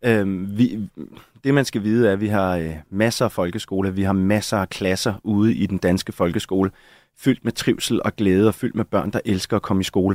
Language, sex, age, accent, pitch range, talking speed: Danish, male, 30-49, native, 100-120 Hz, 220 wpm